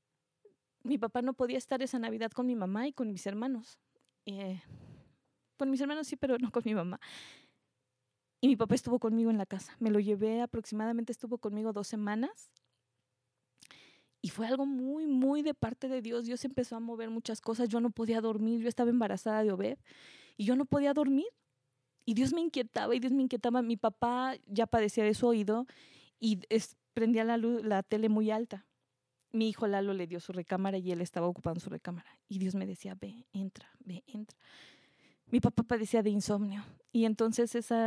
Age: 20-39